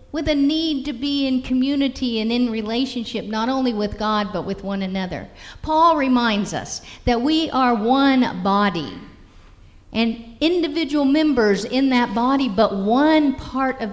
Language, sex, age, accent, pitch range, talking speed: English, female, 50-69, American, 190-260 Hz, 155 wpm